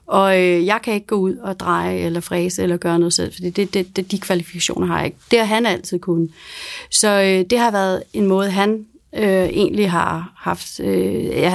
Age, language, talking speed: 30-49, Danish, 210 wpm